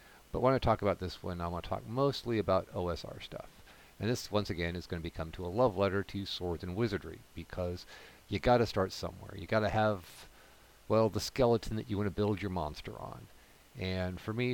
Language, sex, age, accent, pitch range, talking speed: English, male, 50-69, American, 90-110 Hz, 225 wpm